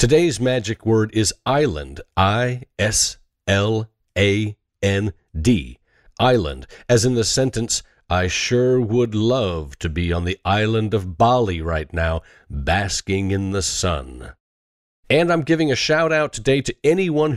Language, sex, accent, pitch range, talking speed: English, male, American, 90-120 Hz, 130 wpm